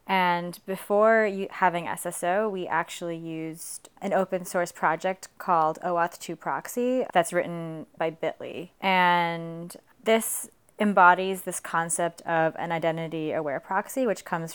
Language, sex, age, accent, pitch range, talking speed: English, female, 20-39, American, 165-190 Hz, 130 wpm